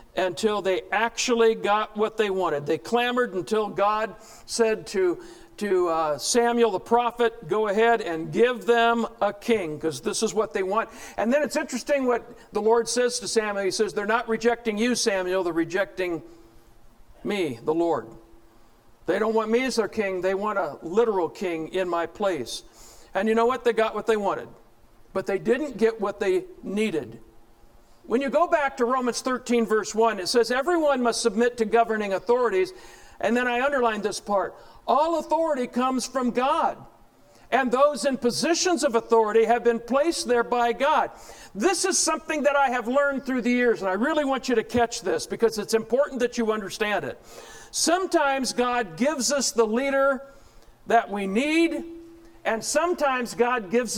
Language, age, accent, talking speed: English, 60-79, American, 180 wpm